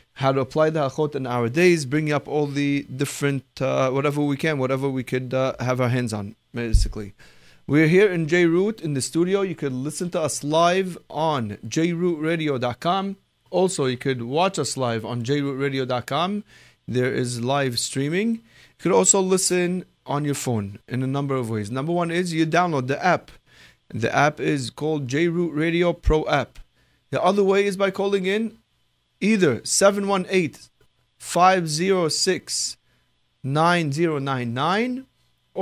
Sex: male